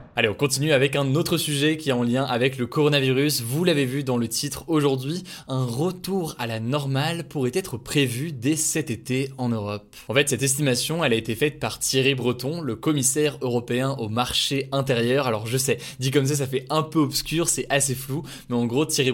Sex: male